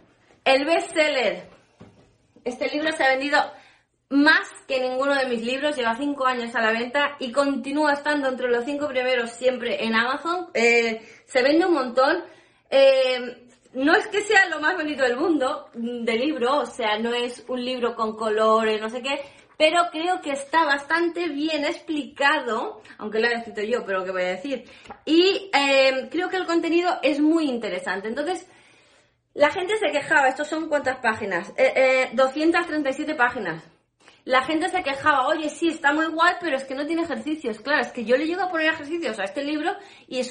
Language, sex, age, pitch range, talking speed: Spanish, female, 20-39, 240-315 Hz, 185 wpm